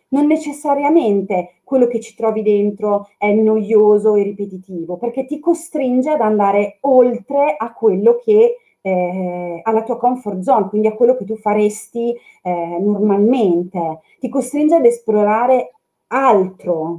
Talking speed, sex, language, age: 135 wpm, female, Italian, 30-49